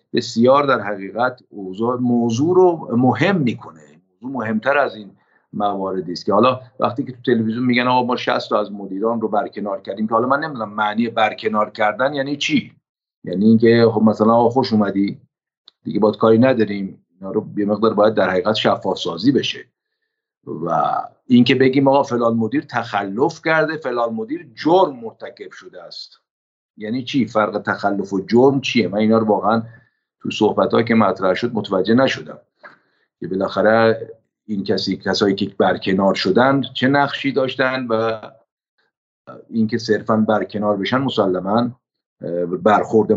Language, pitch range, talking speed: Persian, 105-135 Hz, 145 wpm